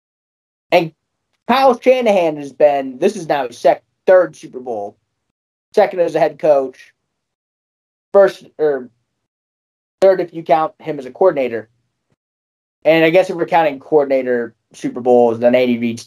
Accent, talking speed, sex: American, 150 wpm, male